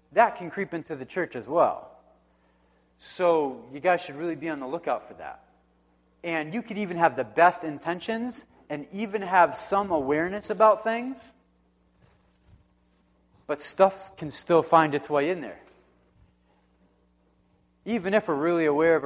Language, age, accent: English, 30-49, American